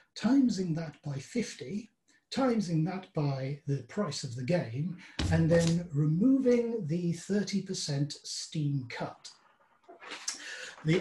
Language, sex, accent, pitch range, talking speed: English, male, British, 145-195 Hz, 110 wpm